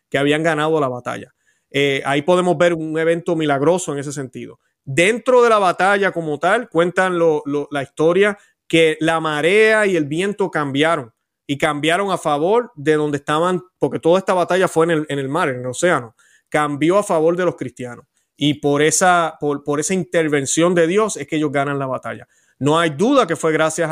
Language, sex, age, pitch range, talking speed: Spanish, male, 30-49, 145-170 Hz, 200 wpm